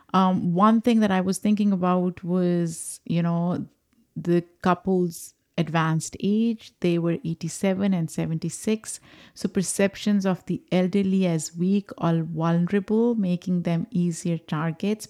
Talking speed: 130 wpm